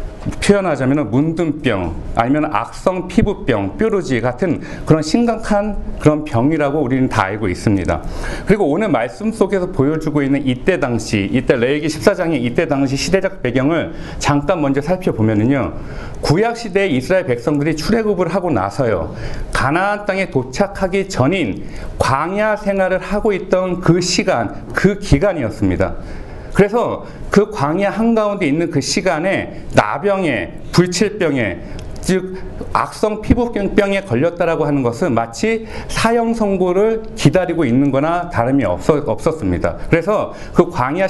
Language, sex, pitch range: Korean, male, 140-205 Hz